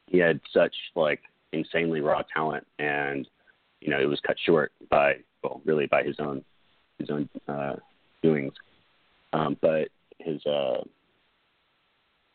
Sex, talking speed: male, 135 wpm